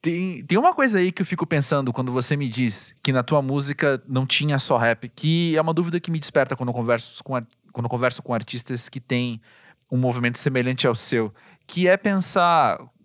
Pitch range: 120-155 Hz